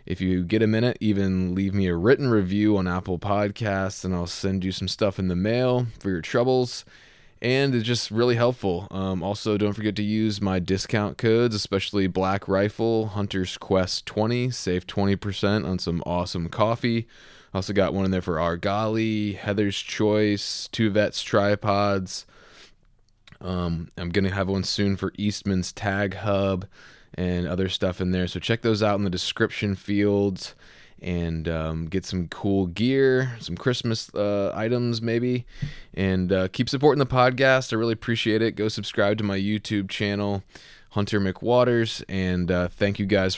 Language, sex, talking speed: English, male, 170 wpm